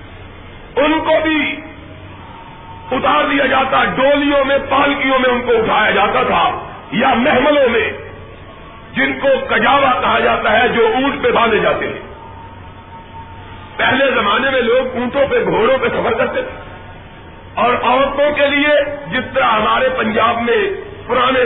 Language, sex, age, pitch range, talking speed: Urdu, male, 50-69, 220-290 Hz, 140 wpm